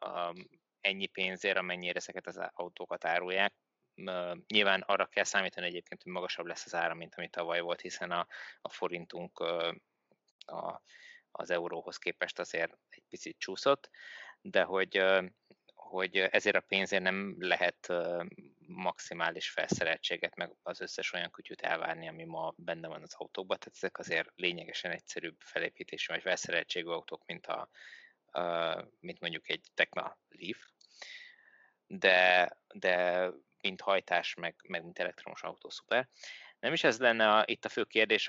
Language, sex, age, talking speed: Hungarian, male, 20-39, 140 wpm